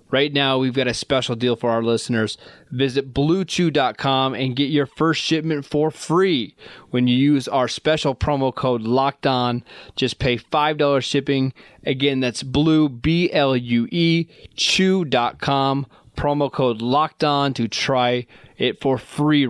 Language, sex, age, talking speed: English, male, 20-39, 135 wpm